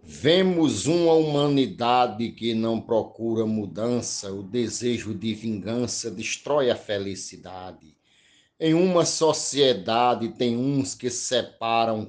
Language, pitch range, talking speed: Portuguese, 115-165 Hz, 105 wpm